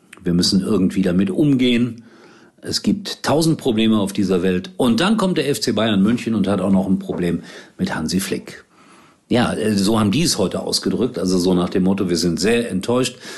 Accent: German